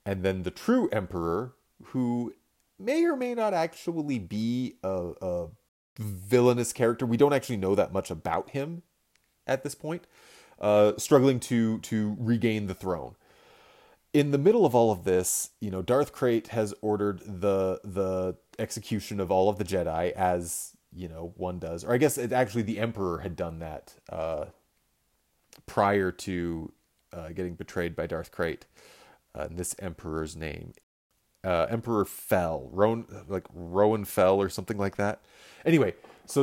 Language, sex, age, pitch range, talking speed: English, male, 30-49, 90-120 Hz, 160 wpm